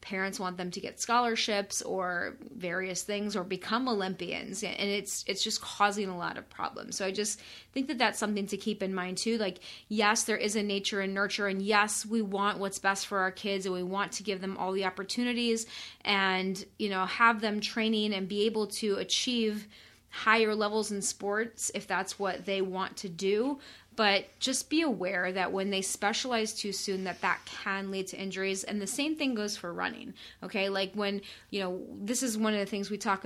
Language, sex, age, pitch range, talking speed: English, female, 30-49, 190-215 Hz, 210 wpm